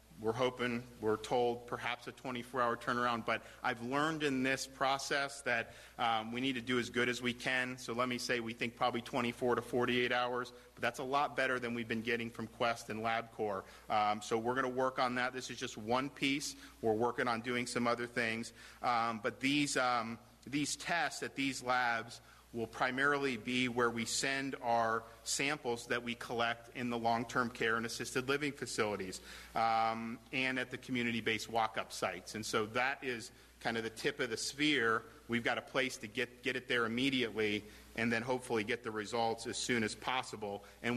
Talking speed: 200 wpm